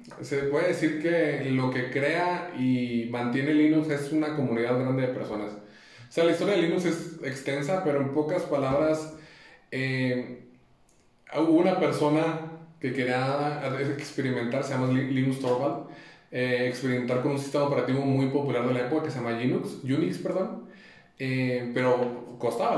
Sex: male